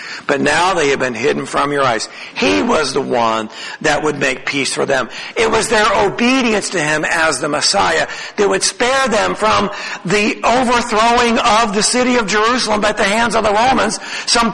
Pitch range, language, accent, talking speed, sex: 190-250 Hz, English, American, 195 wpm, male